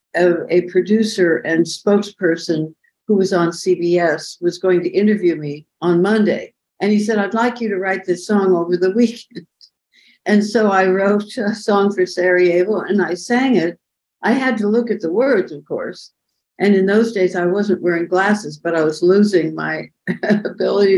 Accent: American